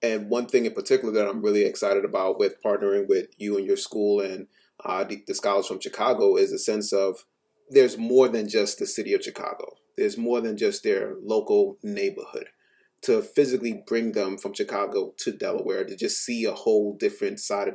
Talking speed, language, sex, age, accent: 200 wpm, English, male, 30-49, American